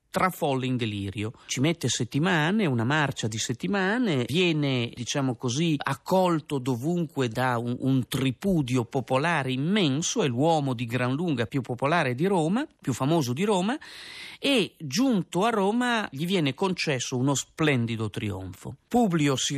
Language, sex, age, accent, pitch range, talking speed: Italian, male, 40-59, native, 125-170 Hz, 145 wpm